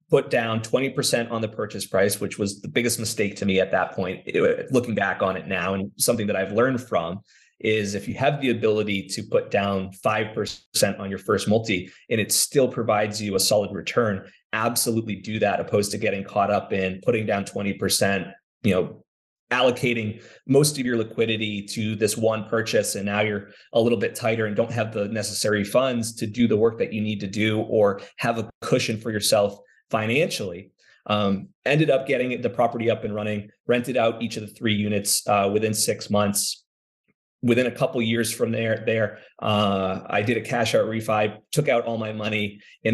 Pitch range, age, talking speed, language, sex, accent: 100-115 Hz, 20-39, 200 wpm, English, male, American